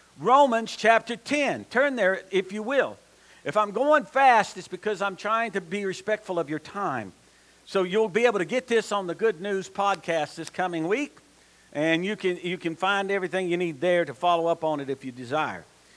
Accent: American